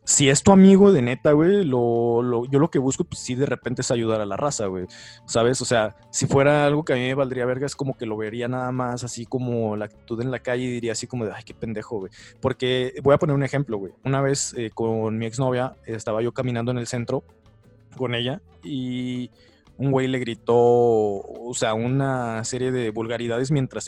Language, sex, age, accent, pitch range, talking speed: Spanish, male, 20-39, Mexican, 115-145 Hz, 225 wpm